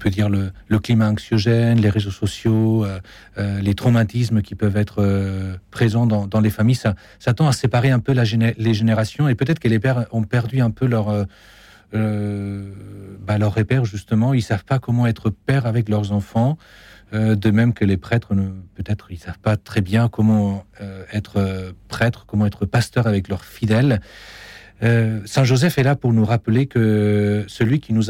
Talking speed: 190 wpm